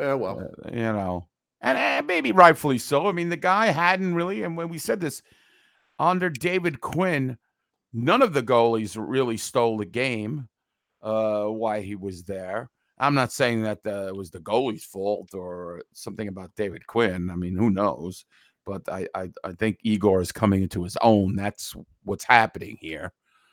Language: English